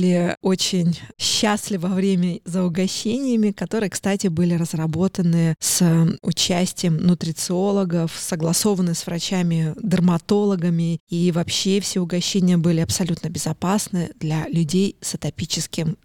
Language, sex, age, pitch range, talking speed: Russian, female, 20-39, 170-195 Hz, 105 wpm